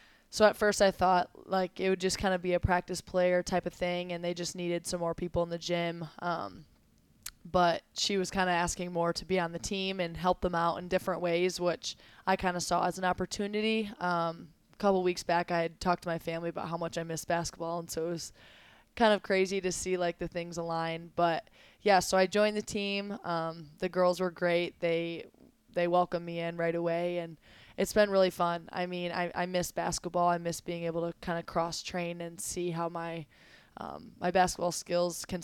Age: 20-39